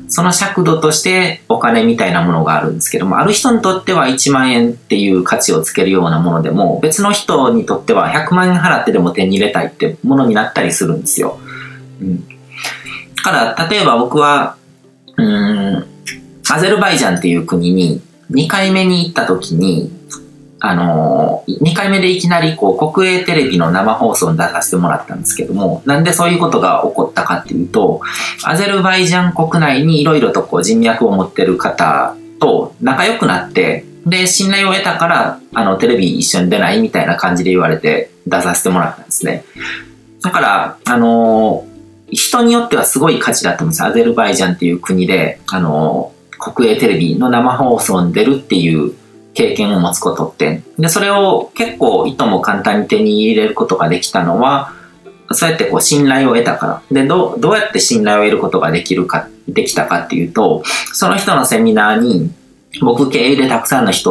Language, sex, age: Japanese, male, 40-59